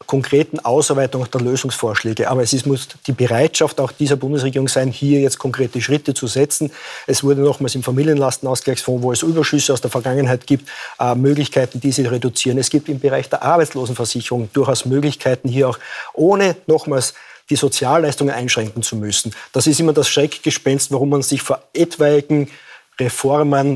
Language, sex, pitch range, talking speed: German, male, 130-150 Hz, 160 wpm